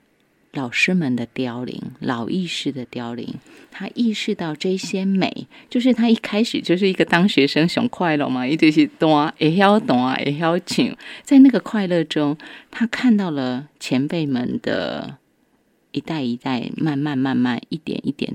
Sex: female